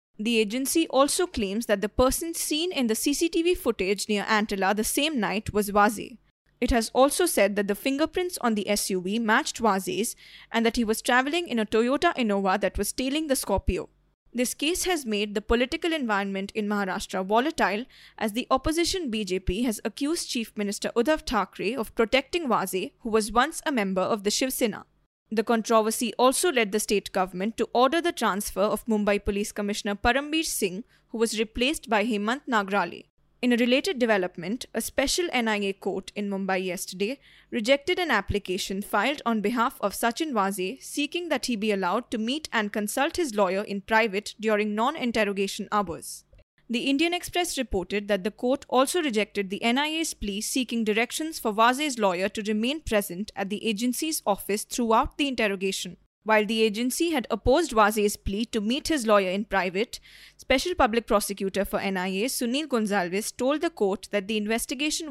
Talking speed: 175 wpm